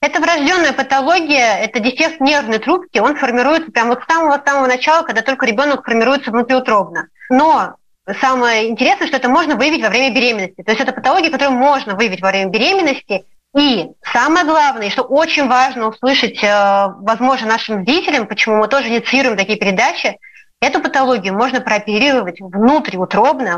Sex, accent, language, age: female, native, Russian, 20-39